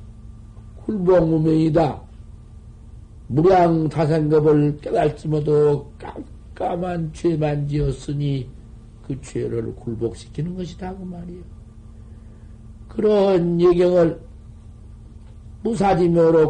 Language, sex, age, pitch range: Korean, male, 50-69, 110-175 Hz